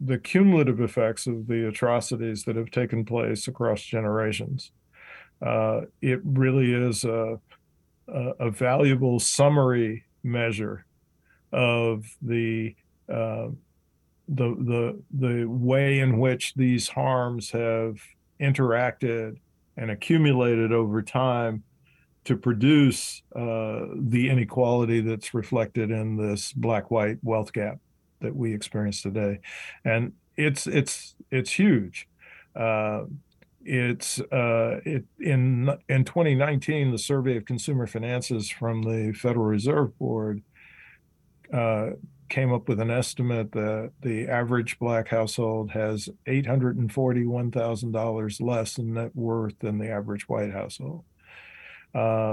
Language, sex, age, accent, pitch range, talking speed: English, male, 50-69, American, 110-130 Hz, 120 wpm